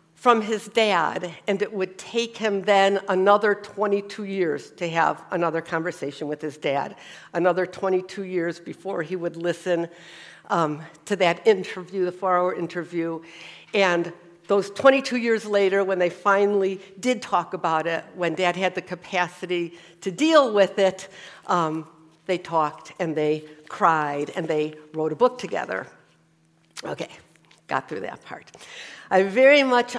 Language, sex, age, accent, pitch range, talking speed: English, female, 60-79, American, 180-235 Hz, 150 wpm